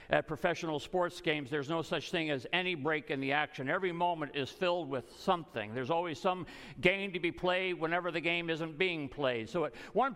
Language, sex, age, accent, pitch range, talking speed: English, male, 50-69, American, 155-195 Hz, 215 wpm